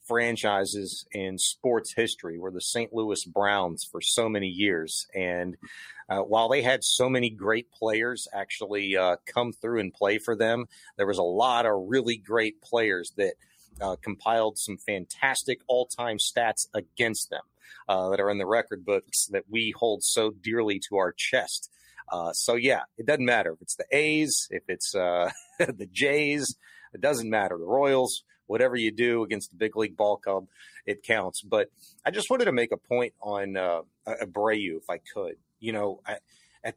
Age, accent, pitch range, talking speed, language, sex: 30-49, American, 100-125 Hz, 185 wpm, English, male